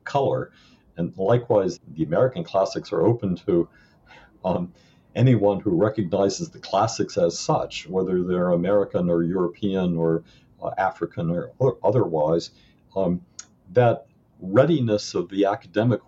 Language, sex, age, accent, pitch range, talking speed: English, male, 50-69, American, 85-100 Hz, 125 wpm